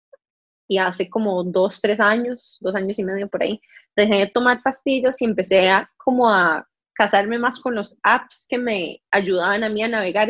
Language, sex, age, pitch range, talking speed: Spanish, female, 20-39, 190-235 Hz, 190 wpm